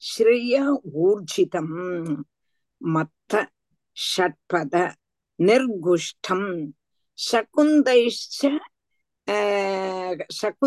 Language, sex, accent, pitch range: Tamil, female, native, 195-285 Hz